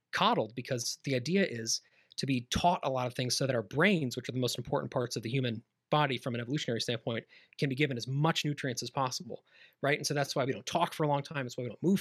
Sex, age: male, 30-49